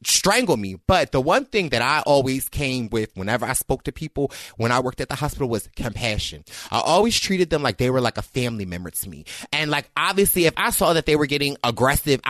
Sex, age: male, 30-49